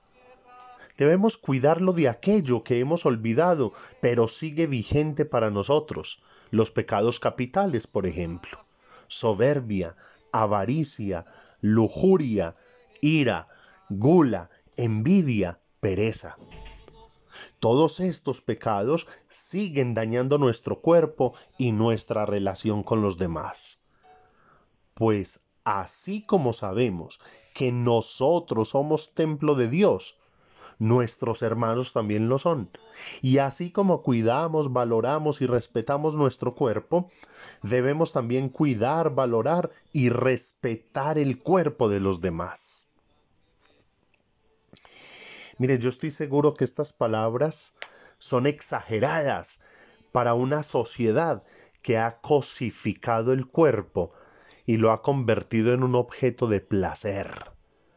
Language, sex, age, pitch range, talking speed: Spanish, male, 40-59, 110-150 Hz, 100 wpm